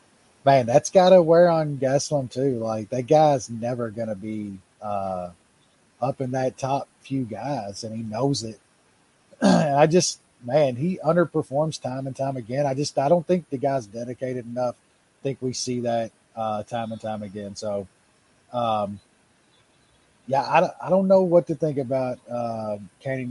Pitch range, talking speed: 110-140 Hz, 170 wpm